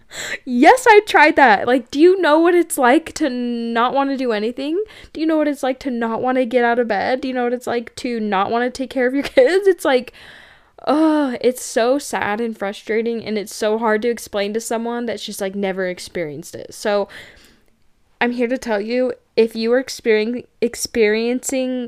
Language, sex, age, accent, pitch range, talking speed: English, female, 10-29, American, 200-255 Hz, 215 wpm